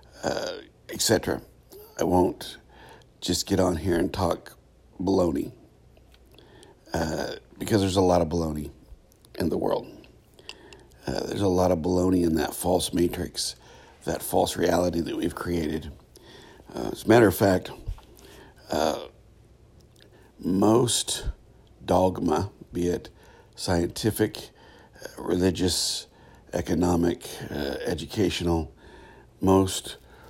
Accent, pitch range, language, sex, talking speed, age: American, 85-95 Hz, English, male, 110 wpm, 60-79